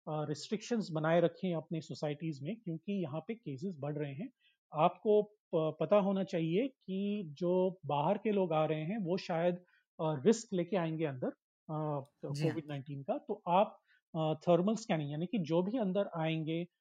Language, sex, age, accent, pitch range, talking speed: Hindi, male, 30-49, native, 160-195 Hz, 170 wpm